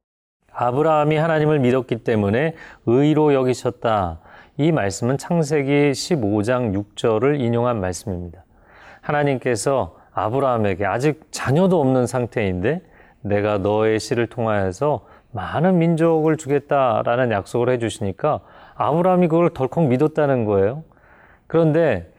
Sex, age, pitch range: male, 30-49, 105-150 Hz